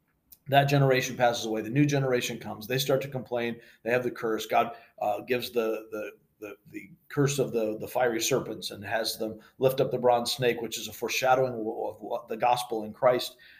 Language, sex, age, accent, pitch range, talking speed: English, male, 40-59, American, 110-140 Hz, 205 wpm